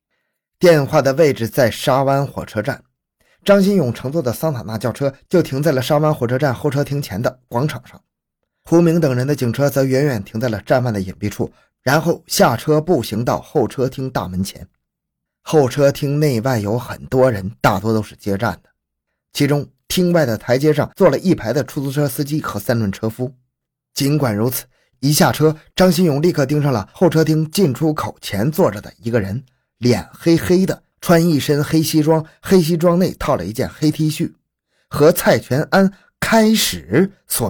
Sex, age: male, 20-39